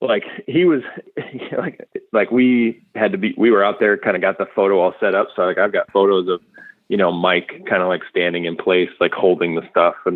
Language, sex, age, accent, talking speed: English, male, 30-49, American, 240 wpm